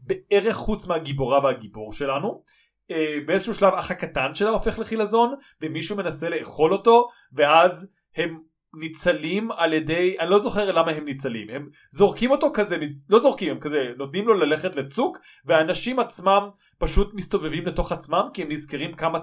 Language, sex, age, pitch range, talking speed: Hebrew, male, 30-49, 155-205 Hz, 155 wpm